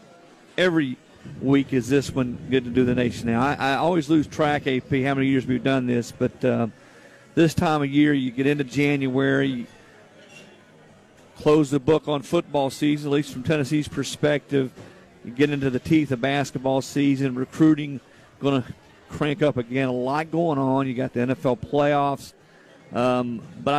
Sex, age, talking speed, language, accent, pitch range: male, 50-69, 175 wpm, English, American, 130-155 Hz